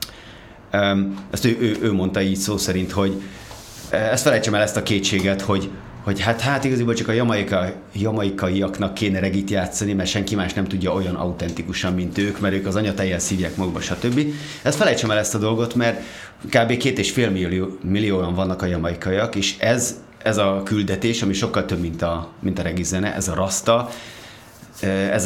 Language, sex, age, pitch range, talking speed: Hungarian, male, 30-49, 95-115 Hz, 185 wpm